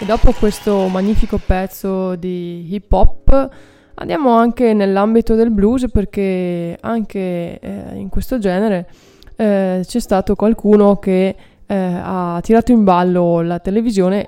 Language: Italian